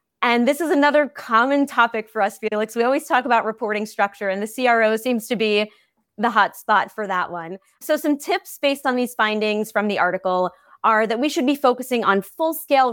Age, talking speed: 30-49, 210 wpm